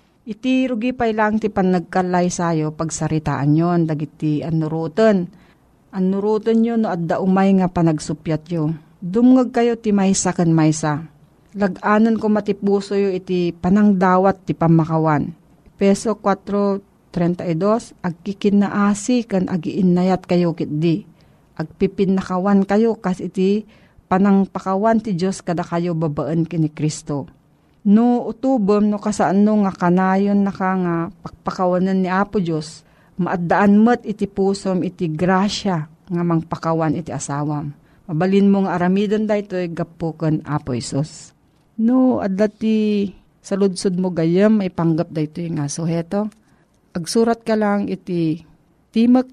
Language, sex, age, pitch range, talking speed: Filipino, female, 40-59, 165-205 Hz, 125 wpm